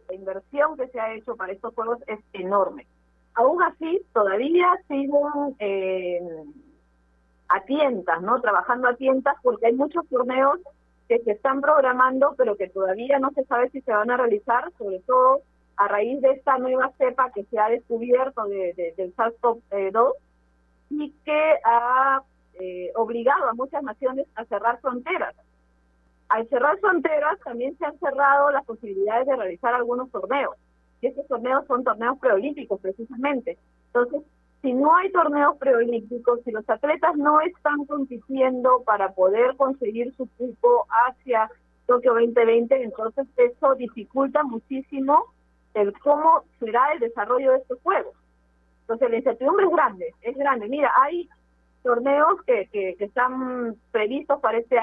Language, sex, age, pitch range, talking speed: Spanish, female, 40-59, 220-280 Hz, 150 wpm